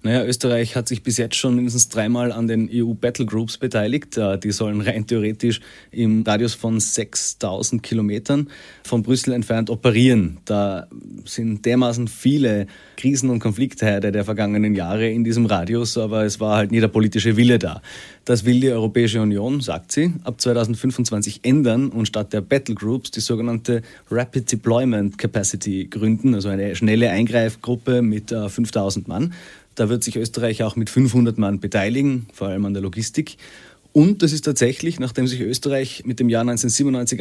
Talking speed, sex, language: 160 wpm, male, German